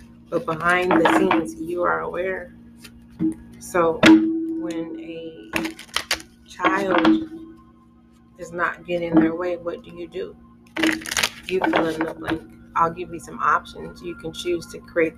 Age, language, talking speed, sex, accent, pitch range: 30-49, English, 140 wpm, female, American, 145-175 Hz